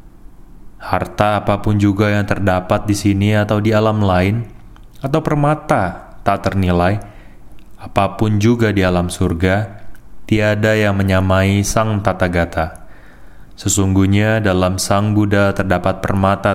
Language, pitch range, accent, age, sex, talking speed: Indonesian, 90-105 Hz, native, 20-39, male, 110 wpm